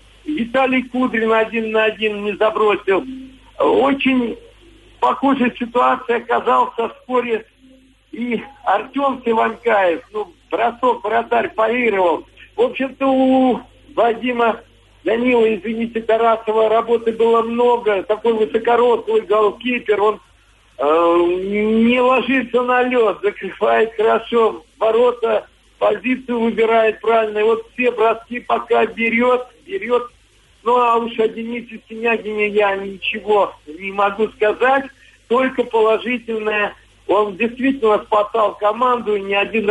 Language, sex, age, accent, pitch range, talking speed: Russian, male, 50-69, native, 210-245 Hz, 105 wpm